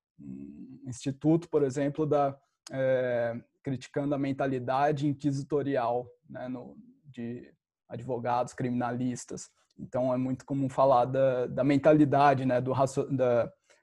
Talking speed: 115 wpm